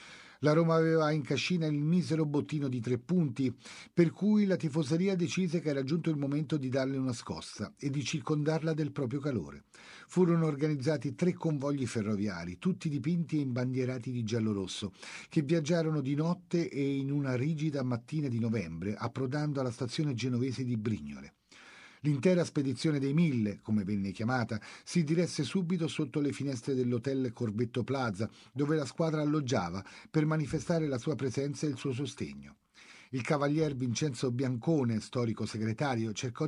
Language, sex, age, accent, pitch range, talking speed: Italian, male, 50-69, native, 115-155 Hz, 155 wpm